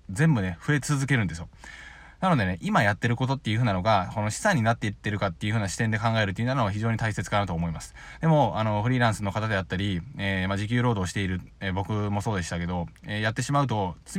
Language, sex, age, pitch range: Japanese, male, 20-39, 95-135 Hz